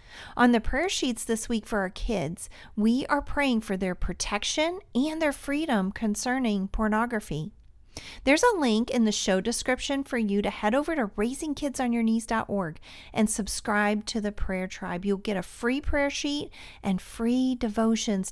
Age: 40-59